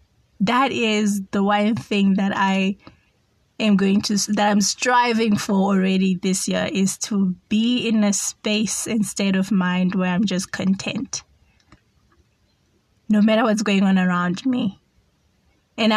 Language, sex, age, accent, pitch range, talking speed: English, female, 20-39, South African, 190-215 Hz, 145 wpm